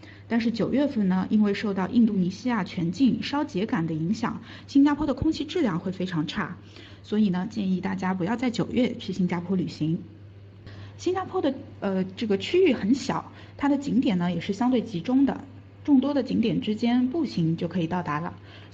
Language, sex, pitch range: Chinese, female, 180-255 Hz